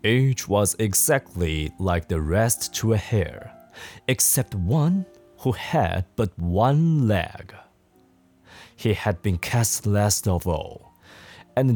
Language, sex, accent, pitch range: Chinese, male, native, 100-145 Hz